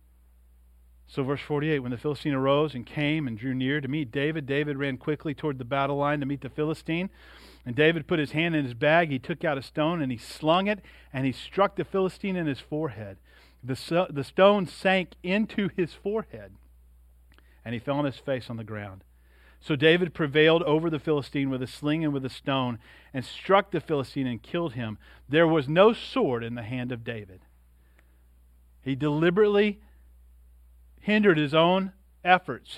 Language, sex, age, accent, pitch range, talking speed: English, male, 40-59, American, 115-155 Hz, 185 wpm